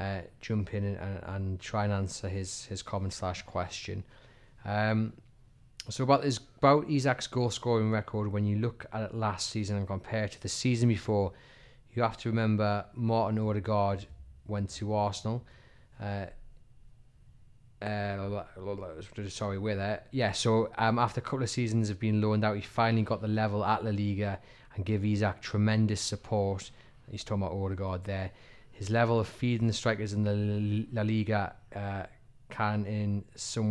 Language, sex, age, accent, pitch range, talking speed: English, male, 20-39, British, 100-115 Hz, 170 wpm